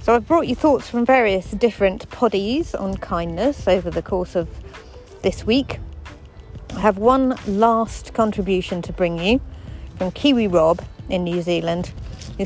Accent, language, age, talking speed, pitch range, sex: British, English, 40-59, 155 wpm, 170-230 Hz, female